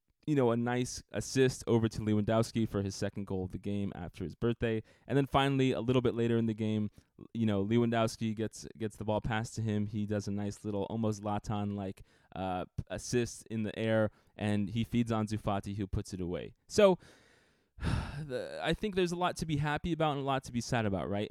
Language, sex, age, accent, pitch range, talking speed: English, male, 20-39, American, 100-120 Hz, 220 wpm